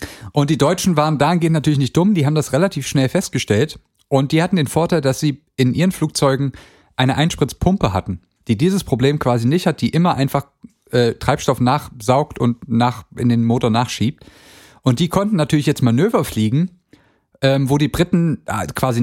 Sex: male